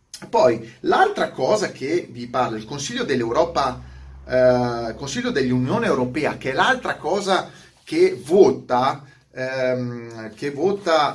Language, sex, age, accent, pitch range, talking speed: Italian, male, 30-49, native, 125-185 Hz, 120 wpm